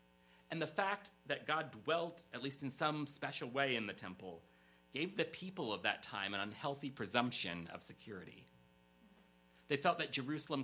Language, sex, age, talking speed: English, male, 40-59, 170 wpm